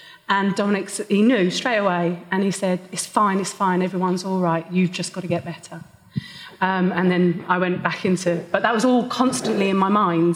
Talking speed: 220 wpm